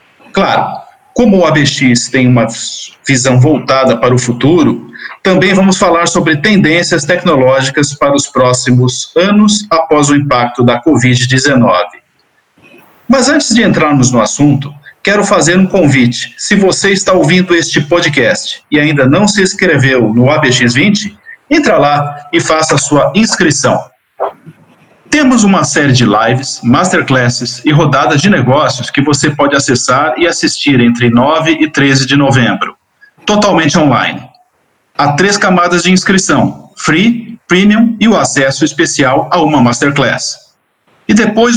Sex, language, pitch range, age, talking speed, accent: male, Portuguese, 135-190 Hz, 50-69, 135 wpm, Brazilian